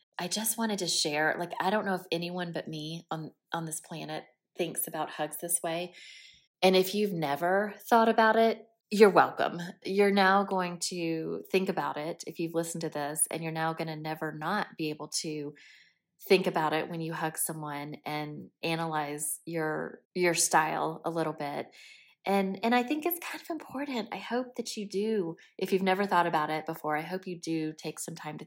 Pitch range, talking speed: 155-190 Hz, 200 wpm